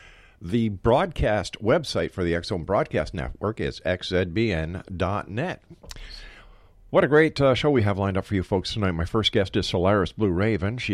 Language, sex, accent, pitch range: English, male, American, 90-115 Hz